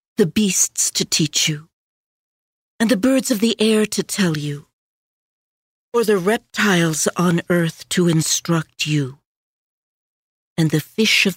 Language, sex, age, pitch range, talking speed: English, female, 60-79, 165-200 Hz, 135 wpm